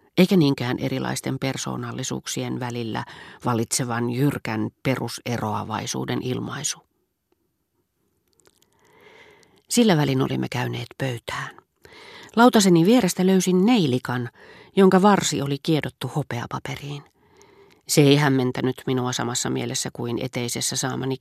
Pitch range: 125-175 Hz